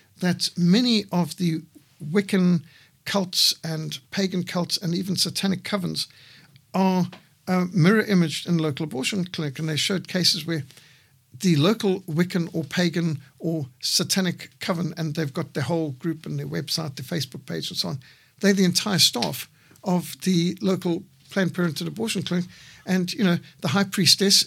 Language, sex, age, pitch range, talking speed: English, male, 60-79, 150-185 Hz, 160 wpm